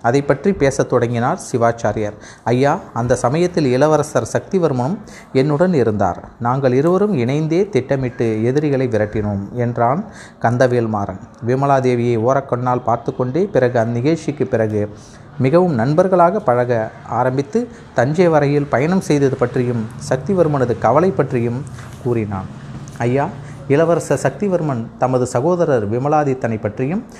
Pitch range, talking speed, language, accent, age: 115-145 Hz, 105 wpm, Tamil, native, 30-49